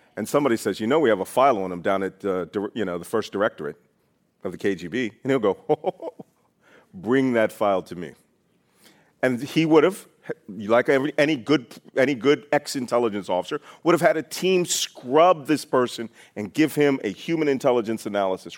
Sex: male